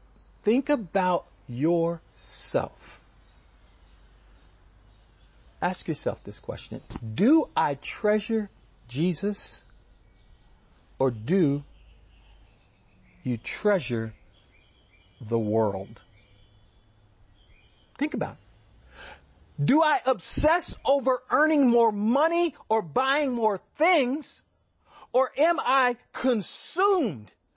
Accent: American